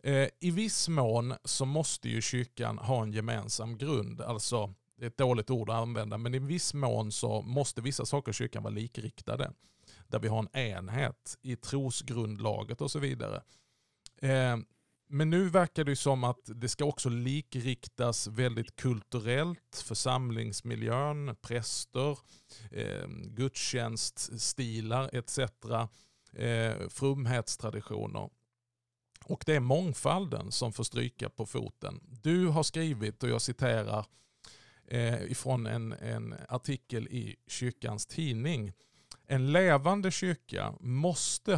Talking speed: 120 wpm